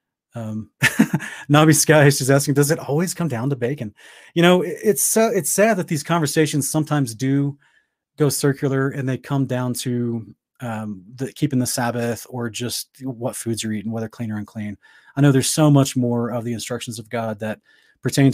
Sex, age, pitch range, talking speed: male, 30-49, 120-140 Hz, 195 wpm